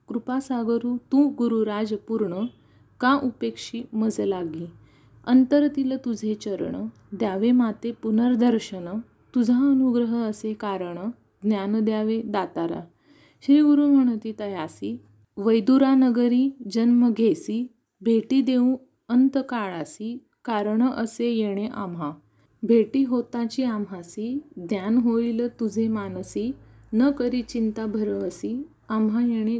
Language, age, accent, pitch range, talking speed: Marathi, 30-49, native, 210-250 Hz, 95 wpm